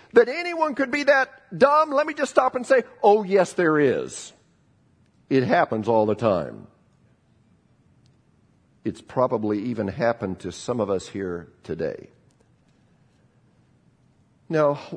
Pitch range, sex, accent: 115-180 Hz, male, American